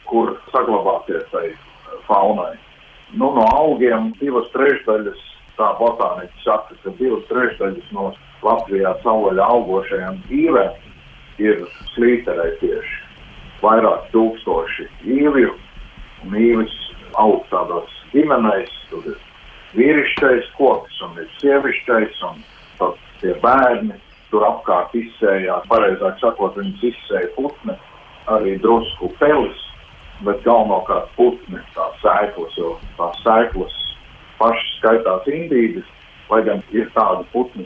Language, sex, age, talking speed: Russian, male, 50-69, 65 wpm